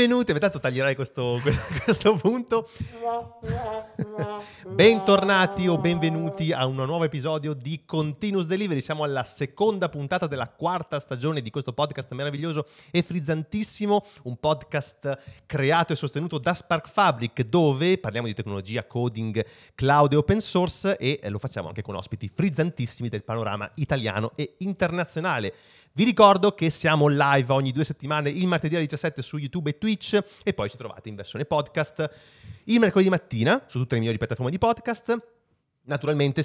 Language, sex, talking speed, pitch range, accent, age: Italian, male, 155 wpm, 120-175 Hz, native, 30-49